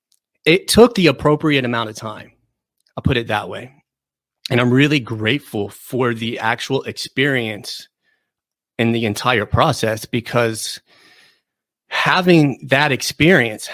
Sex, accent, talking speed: male, American, 120 wpm